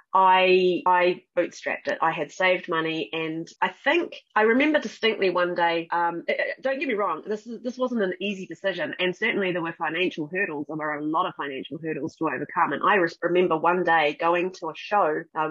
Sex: female